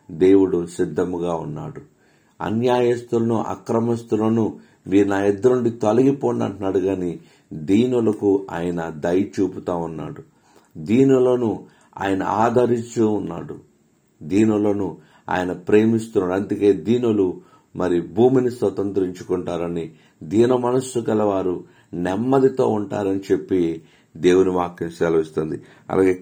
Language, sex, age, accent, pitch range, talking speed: Telugu, male, 50-69, native, 85-110 Hz, 80 wpm